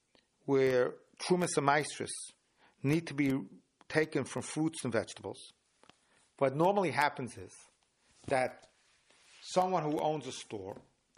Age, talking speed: 50-69, 120 wpm